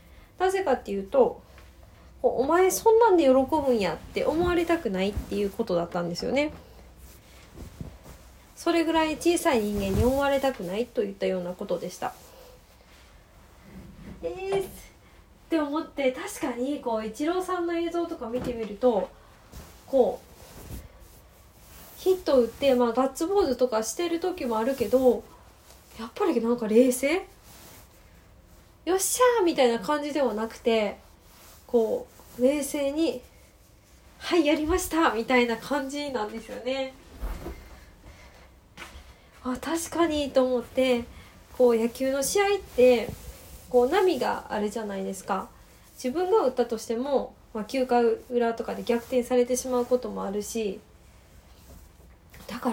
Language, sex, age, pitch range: Japanese, female, 20-39, 225-325 Hz